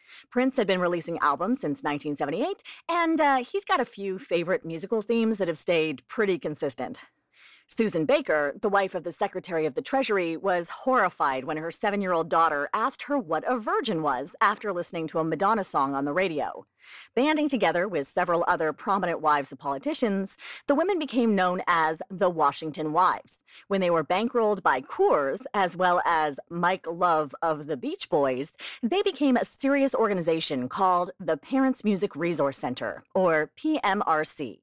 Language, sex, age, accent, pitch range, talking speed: English, female, 30-49, American, 170-255 Hz, 170 wpm